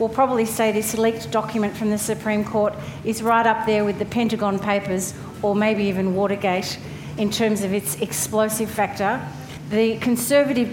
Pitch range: 195-220 Hz